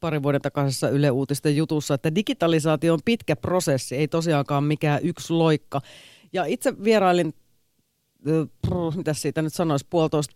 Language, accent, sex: Finnish, native, female